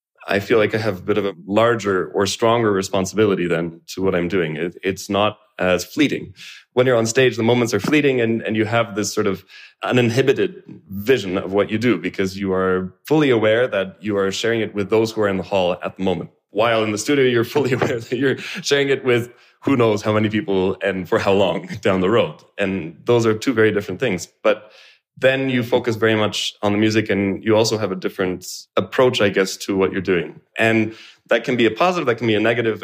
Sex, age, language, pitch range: male, 20-39, English, 95-115 Hz